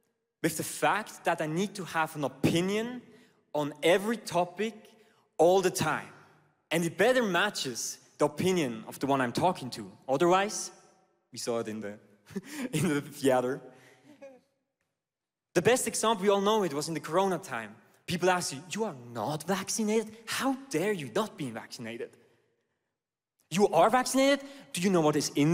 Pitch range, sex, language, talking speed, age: 150-210 Hz, male, English, 165 wpm, 20-39